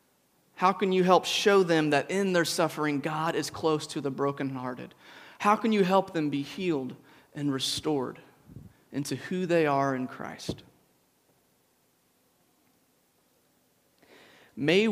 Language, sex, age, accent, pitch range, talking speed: English, male, 30-49, American, 135-160 Hz, 130 wpm